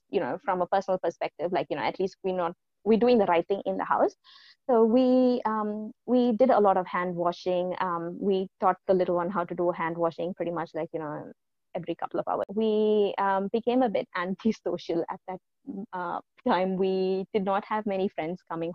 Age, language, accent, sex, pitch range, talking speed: 20-39, English, Indian, female, 185-225 Hz, 220 wpm